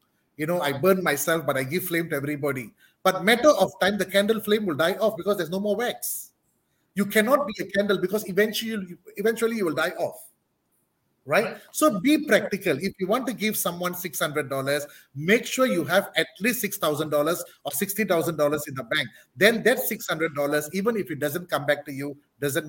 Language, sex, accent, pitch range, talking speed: English, male, Indian, 155-210 Hz, 195 wpm